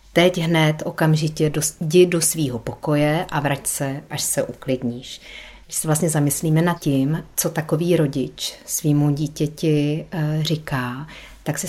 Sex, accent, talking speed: female, native, 140 wpm